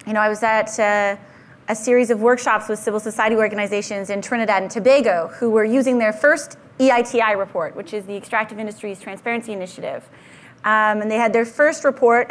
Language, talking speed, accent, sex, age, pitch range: English, 190 wpm, American, female, 30-49, 210-245 Hz